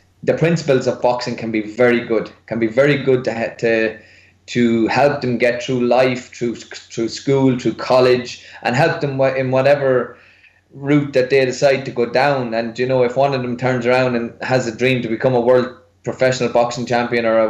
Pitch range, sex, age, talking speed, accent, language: 110-130 Hz, male, 20-39, 200 wpm, Irish, English